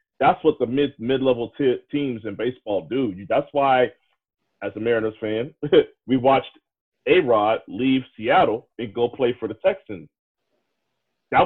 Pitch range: 120-165 Hz